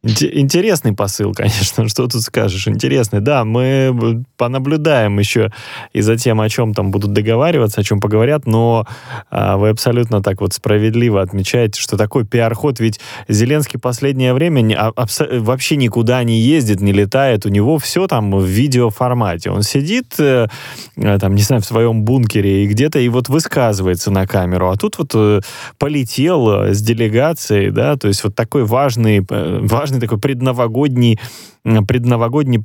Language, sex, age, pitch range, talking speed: Russian, male, 20-39, 110-130 Hz, 145 wpm